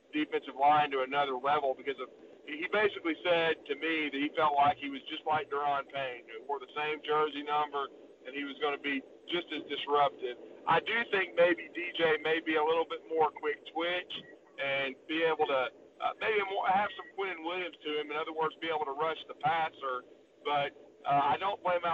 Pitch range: 145-180 Hz